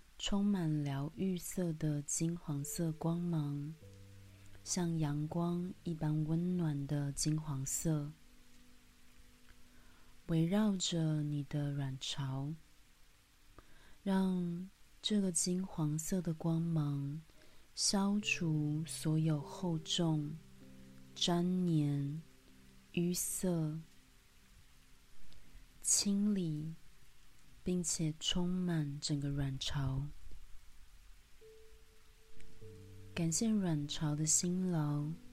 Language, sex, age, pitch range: Chinese, female, 30-49, 135-170 Hz